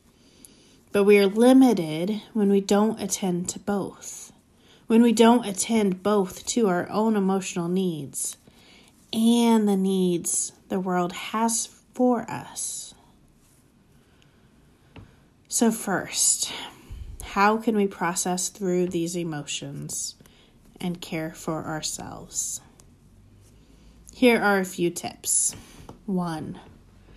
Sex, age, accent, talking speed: female, 30-49, American, 105 wpm